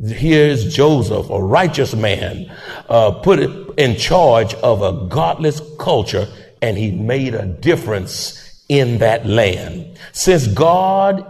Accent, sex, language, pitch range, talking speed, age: American, male, English, 135-200 Hz, 120 wpm, 50-69